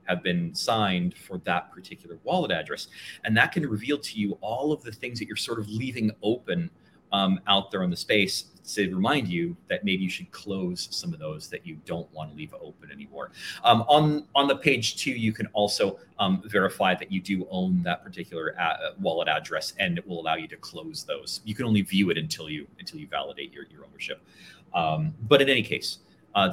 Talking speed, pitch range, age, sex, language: 215 wpm, 95-150 Hz, 30-49, male, English